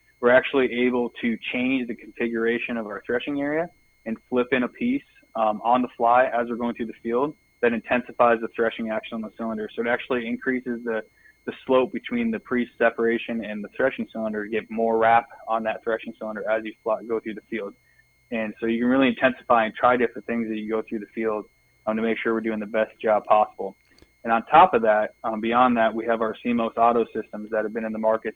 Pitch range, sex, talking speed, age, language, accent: 110-125 Hz, male, 235 wpm, 20-39, English, American